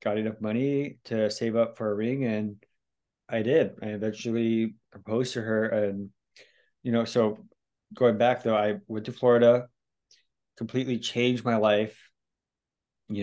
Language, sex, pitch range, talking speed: English, male, 105-120 Hz, 150 wpm